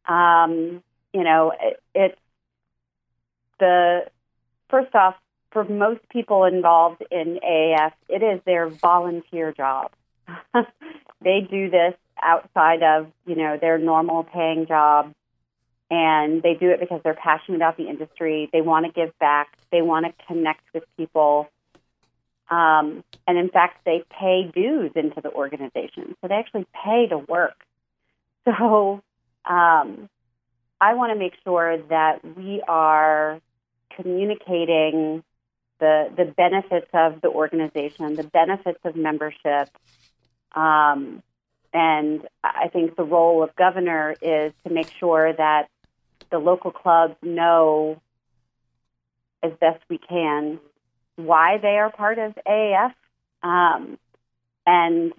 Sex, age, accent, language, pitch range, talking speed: female, 40-59, American, English, 155-175 Hz, 125 wpm